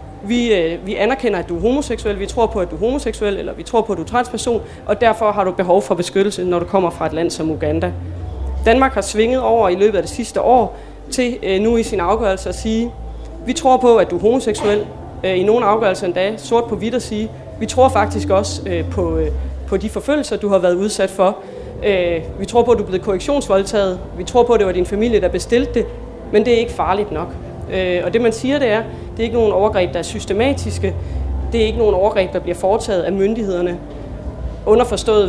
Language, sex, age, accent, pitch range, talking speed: Danish, female, 30-49, native, 180-225 Hz, 225 wpm